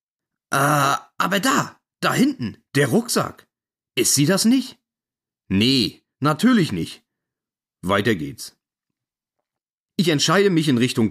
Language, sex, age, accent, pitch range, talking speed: German, male, 40-59, German, 135-220 Hz, 115 wpm